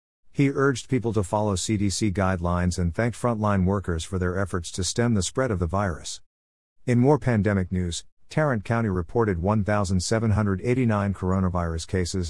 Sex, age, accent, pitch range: male, 50-69, American, 90-110 Hz